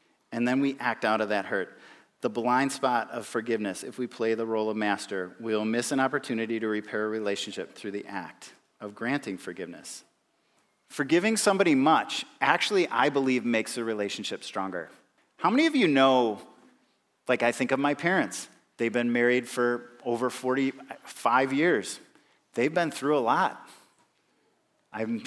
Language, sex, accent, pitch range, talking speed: English, male, American, 115-140 Hz, 160 wpm